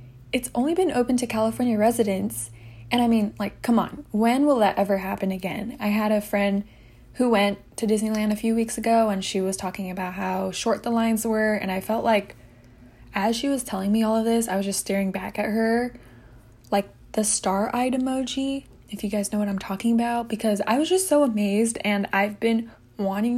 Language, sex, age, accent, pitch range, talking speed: English, female, 10-29, American, 185-230 Hz, 210 wpm